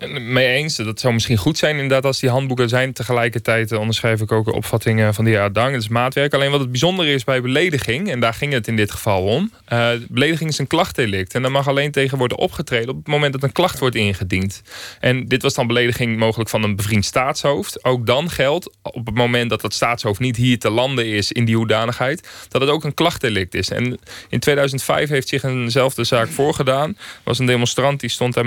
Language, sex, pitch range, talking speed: Dutch, male, 110-135 Hz, 235 wpm